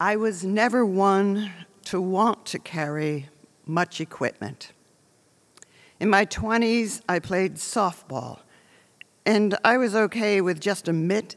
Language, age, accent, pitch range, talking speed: English, 50-69, American, 170-215 Hz, 125 wpm